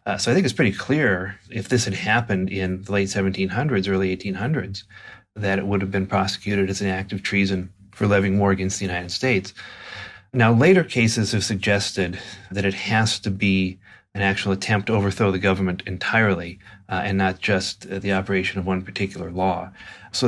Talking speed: 190 wpm